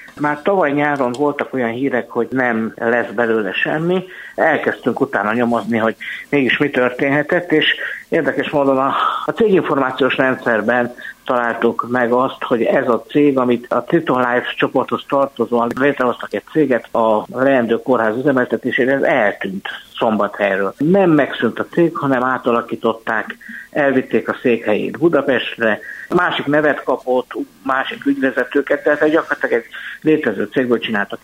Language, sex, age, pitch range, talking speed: Hungarian, male, 60-79, 120-145 Hz, 130 wpm